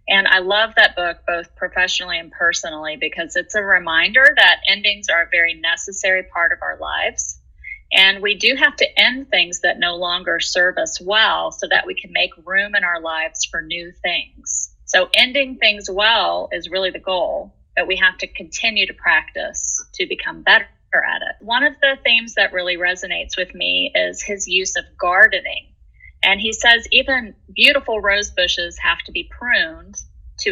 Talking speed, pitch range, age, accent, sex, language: 185 wpm, 180-240 Hz, 30-49, American, female, English